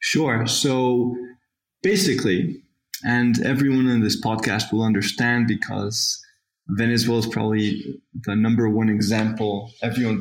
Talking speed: 110 wpm